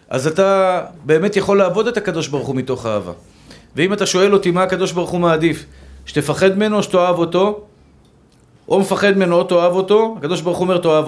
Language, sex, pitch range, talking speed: Hebrew, male, 165-205 Hz, 190 wpm